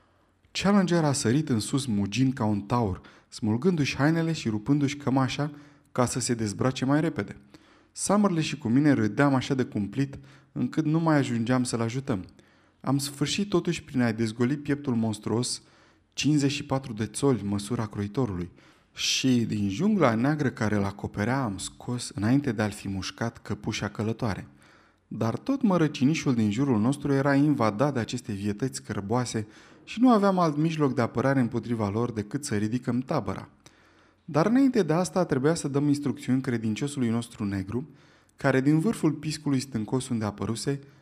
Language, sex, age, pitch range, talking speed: Romanian, male, 20-39, 110-145 Hz, 155 wpm